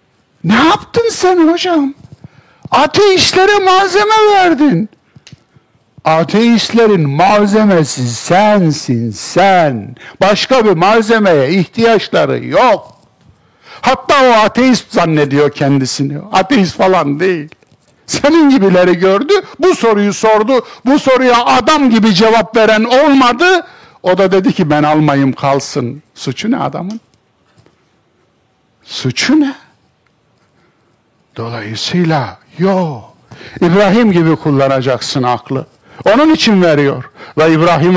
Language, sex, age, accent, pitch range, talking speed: Turkish, male, 60-79, native, 140-230 Hz, 95 wpm